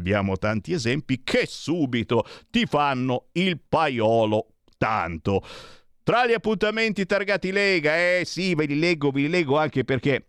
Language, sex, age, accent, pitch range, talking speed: Italian, male, 50-69, native, 100-155 Hz, 145 wpm